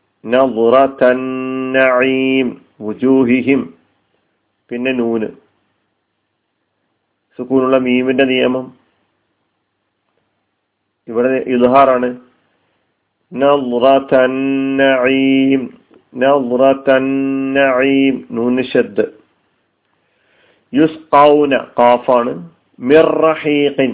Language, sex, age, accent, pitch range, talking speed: Malayalam, male, 50-69, native, 120-145 Hz, 50 wpm